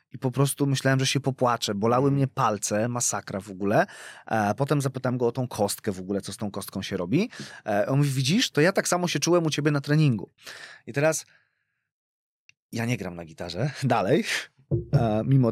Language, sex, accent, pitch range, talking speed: Polish, male, native, 105-130 Hz, 195 wpm